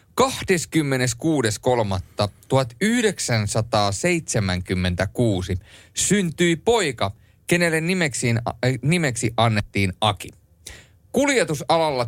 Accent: native